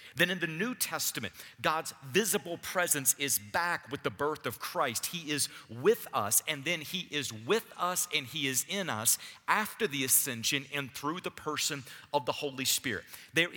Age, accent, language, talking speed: 40-59, American, English, 185 wpm